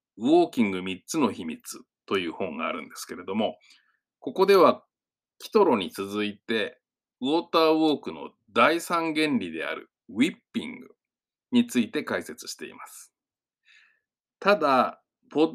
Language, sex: Japanese, male